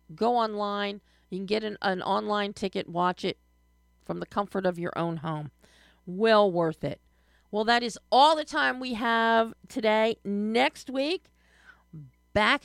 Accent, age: American, 40-59